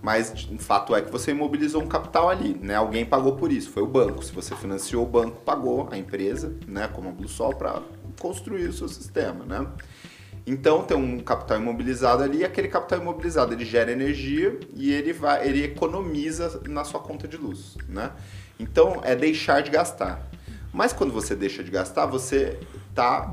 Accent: Brazilian